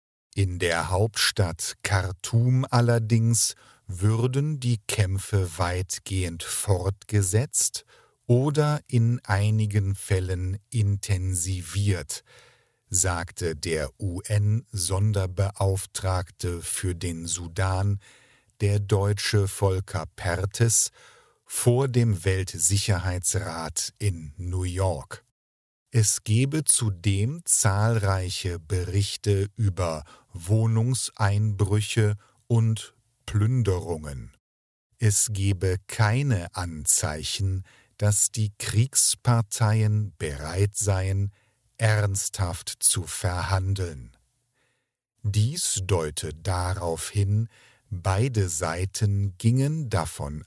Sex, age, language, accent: male, 50-69, English, German